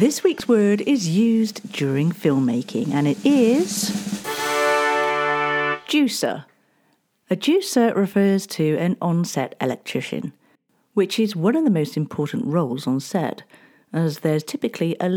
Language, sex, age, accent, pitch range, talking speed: English, female, 50-69, British, 135-210 Hz, 125 wpm